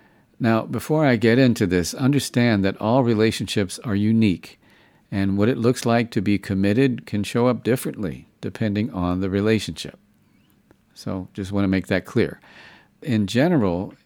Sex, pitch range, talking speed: male, 95-115 Hz, 160 wpm